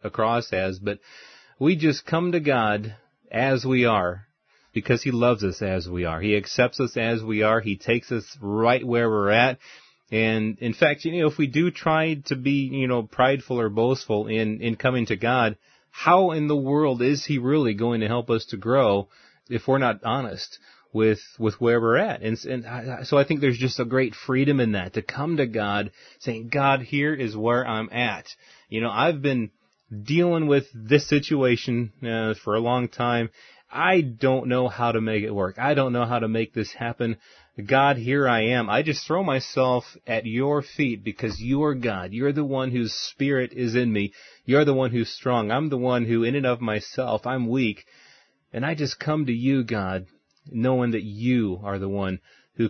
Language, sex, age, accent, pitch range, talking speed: English, male, 30-49, American, 110-135 Hz, 205 wpm